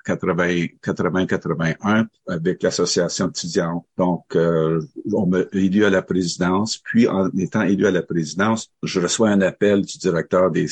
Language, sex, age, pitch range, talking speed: French, male, 50-69, 90-105 Hz, 145 wpm